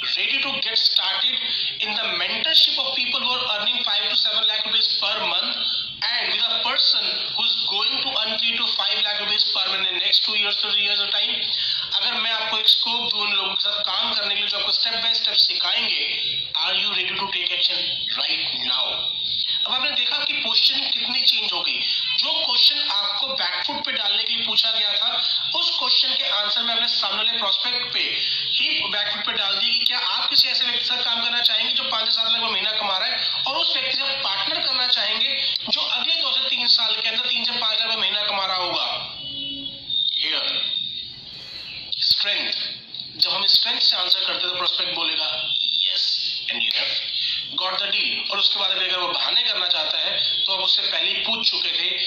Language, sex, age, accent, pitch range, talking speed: Hindi, male, 30-49, native, 185-240 Hz, 135 wpm